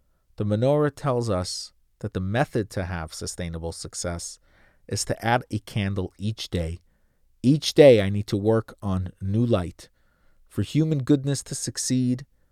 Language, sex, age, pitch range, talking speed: English, male, 40-59, 85-120 Hz, 155 wpm